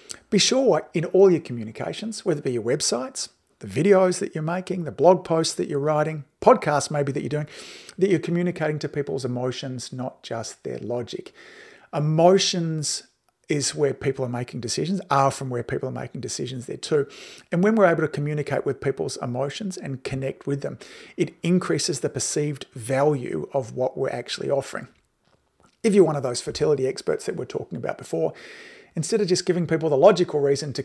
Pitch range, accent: 135-180 Hz, Australian